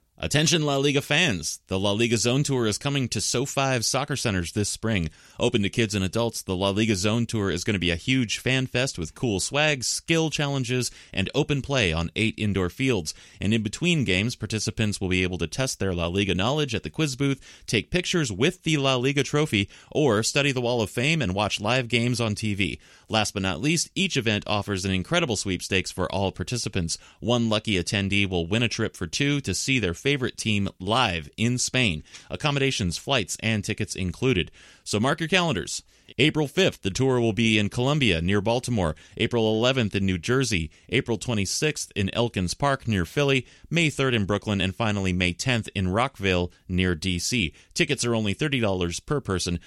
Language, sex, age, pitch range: English, male, 30-49, 95-130 Hz